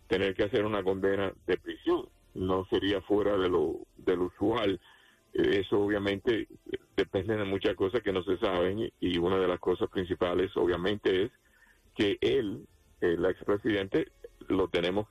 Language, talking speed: English, 155 wpm